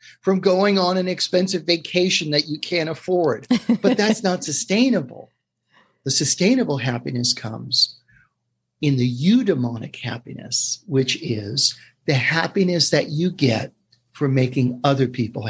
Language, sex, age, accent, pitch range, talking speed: English, male, 50-69, American, 130-195 Hz, 130 wpm